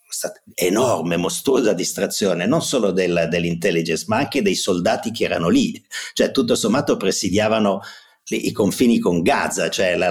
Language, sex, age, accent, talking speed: Italian, male, 50-69, native, 160 wpm